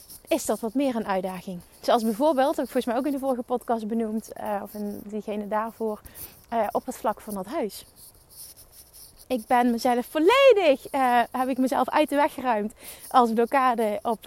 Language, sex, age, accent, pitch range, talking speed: Dutch, female, 30-49, Dutch, 220-300 Hz, 190 wpm